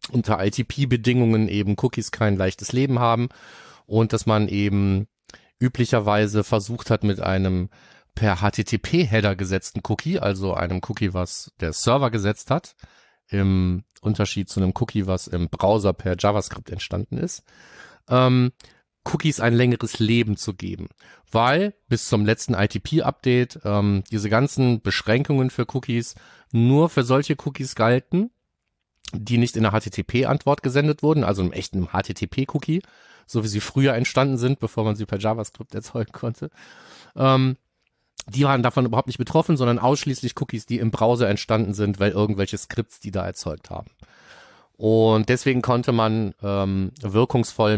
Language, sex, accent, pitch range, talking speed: German, male, German, 100-125 Hz, 145 wpm